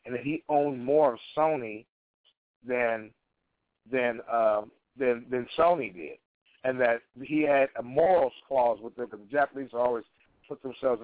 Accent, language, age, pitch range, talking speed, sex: American, English, 50-69, 120-145 Hz, 150 wpm, male